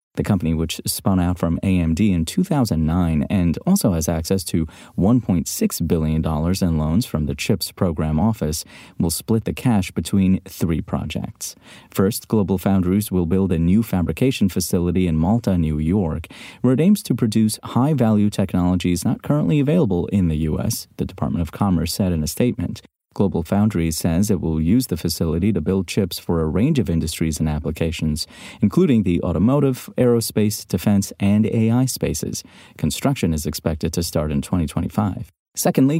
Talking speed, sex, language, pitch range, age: 165 wpm, male, English, 80-110 Hz, 30-49